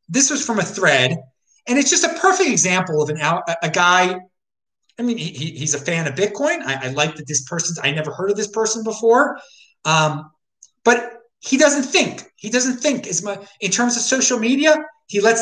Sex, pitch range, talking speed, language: male, 180-285 Hz, 210 wpm, English